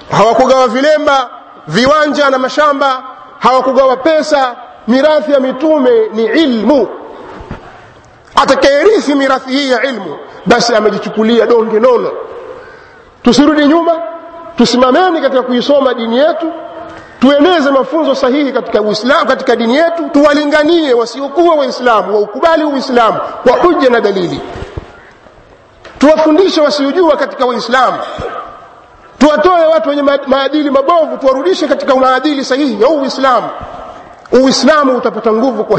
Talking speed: 105 wpm